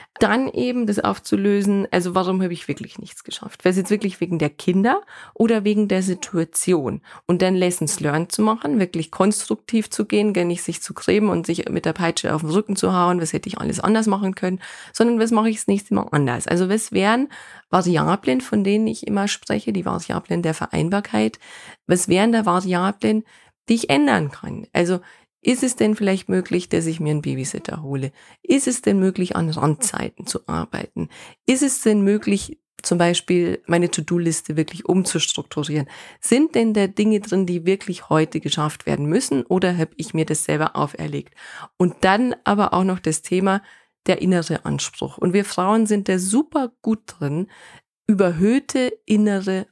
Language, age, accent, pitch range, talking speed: German, 30-49, German, 170-215 Hz, 180 wpm